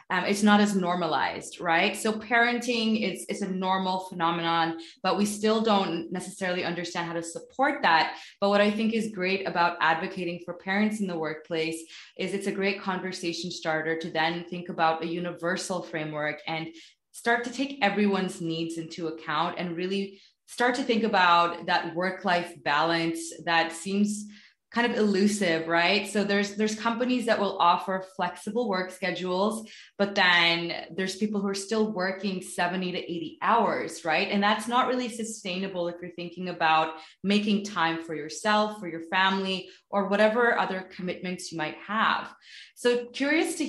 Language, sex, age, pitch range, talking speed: English, female, 20-39, 170-205 Hz, 165 wpm